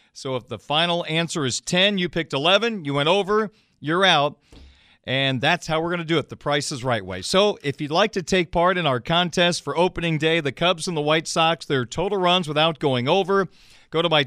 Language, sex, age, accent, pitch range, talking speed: English, male, 40-59, American, 140-185 Hz, 235 wpm